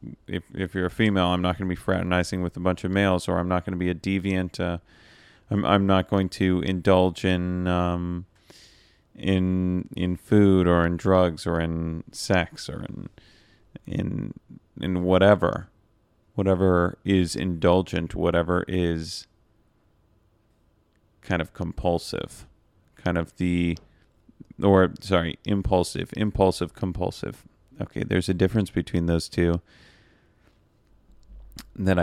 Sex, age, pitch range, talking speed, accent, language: male, 30-49, 85-100 Hz, 135 wpm, American, English